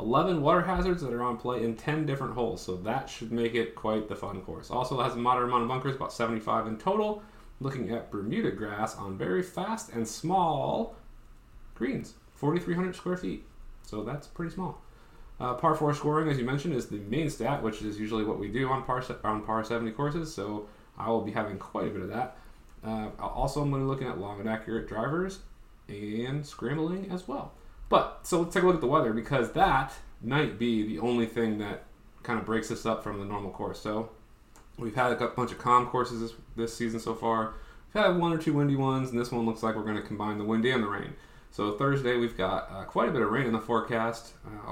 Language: English